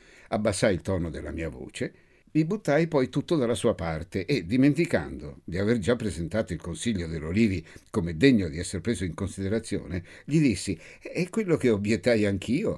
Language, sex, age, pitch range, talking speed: Italian, male, 60-79, 85-115 Hz, 170 wpm